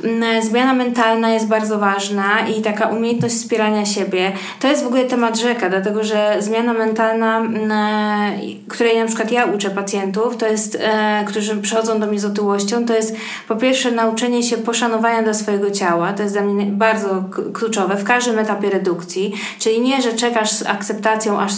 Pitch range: 205-230 Hz